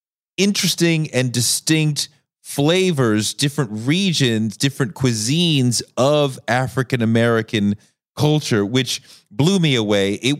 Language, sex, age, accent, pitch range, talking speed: English, male, 30-49, American, 100-130 Hz, 90 wpm